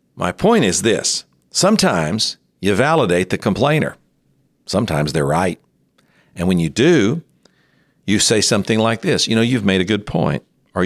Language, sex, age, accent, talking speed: English, male, 60-79, American, 160 wpm